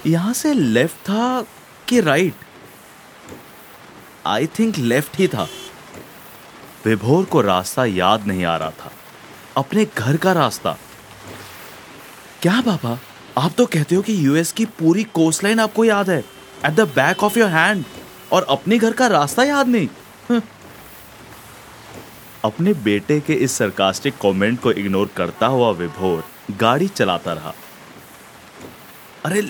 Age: 30-49